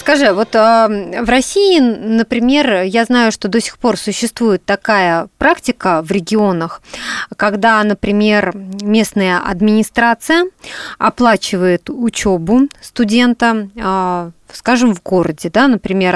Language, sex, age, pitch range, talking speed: Russian, female, 30-49, 185-245 Hz, 110 wpm